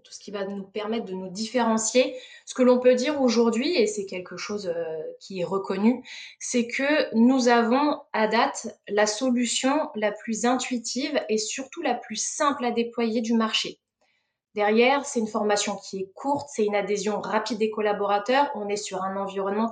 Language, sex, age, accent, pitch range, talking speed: French, female, 20-39, French, 205-255 Hz, 185 wpm